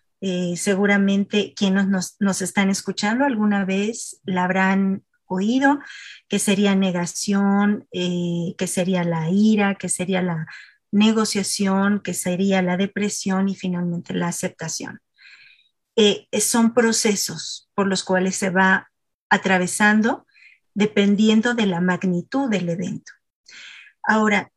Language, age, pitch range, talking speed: Spanish, 30-49, 185-215 Hz, 120 wpm